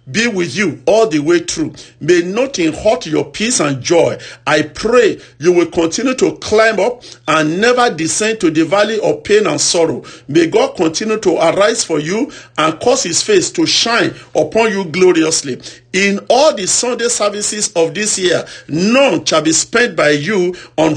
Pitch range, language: 165-230 Hz, English